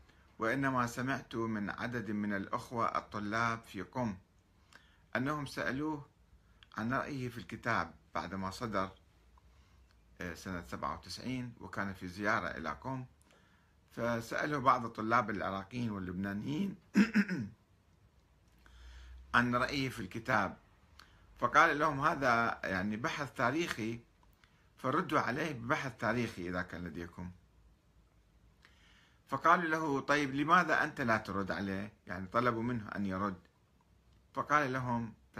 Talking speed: 105 wpm